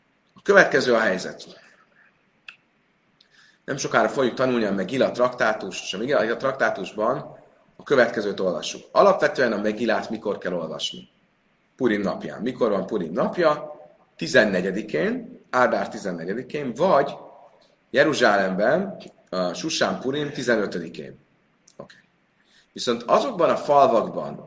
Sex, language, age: male, Hungarian, 30-49